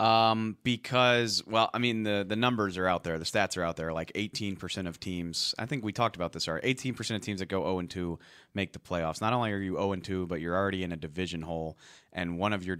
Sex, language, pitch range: male, English, 85-105 Hz